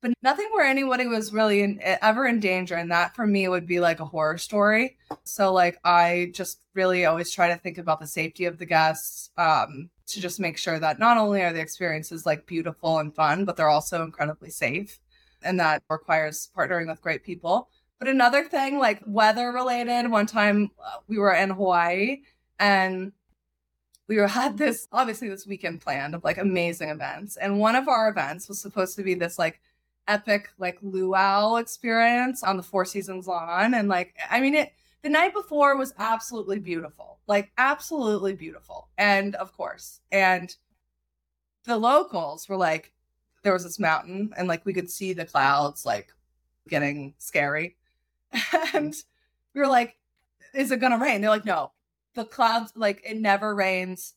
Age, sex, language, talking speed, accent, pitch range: 20-39, female, English, 175 wpm, American, 170-220 Hz